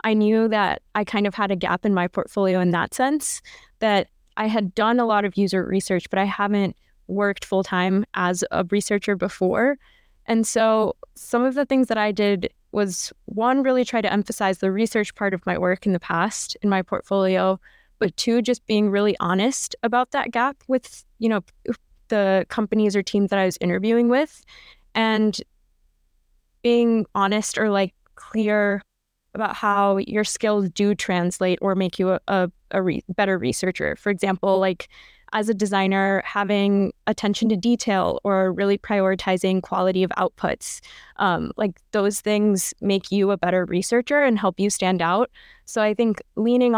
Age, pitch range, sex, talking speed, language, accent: 10-29, 190-220 Hz, female, 175 wpm, English, American